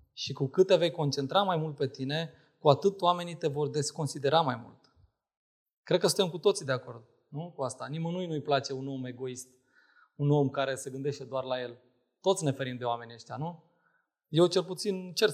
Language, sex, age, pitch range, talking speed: Romanian, male, 20-39, 130-165 Hz, 205 wpm